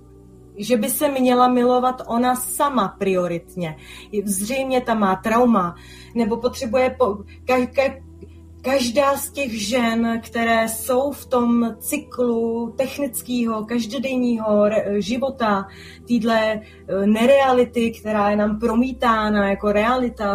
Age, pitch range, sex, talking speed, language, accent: 30-49, 220-255 Hz, female, 100 wpm, Czech, native